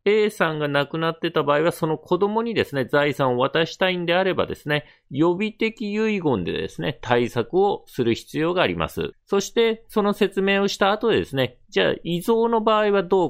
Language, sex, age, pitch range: Japanese, male, 40-59, 135-200 Hz